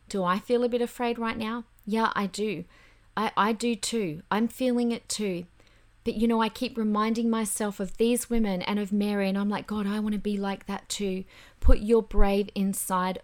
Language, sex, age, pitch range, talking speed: English, female, 30-49, 165-215 Hz, 215 wpm